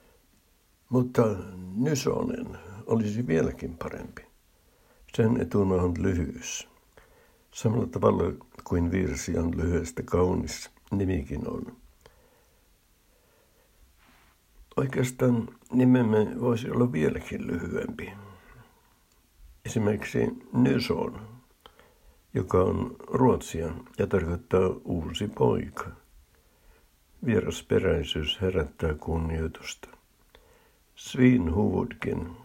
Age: 60-79